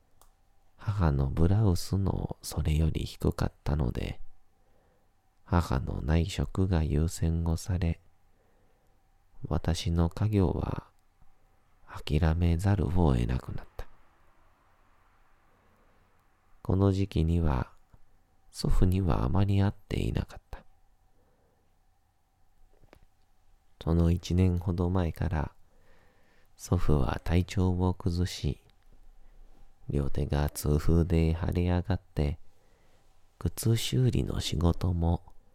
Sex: male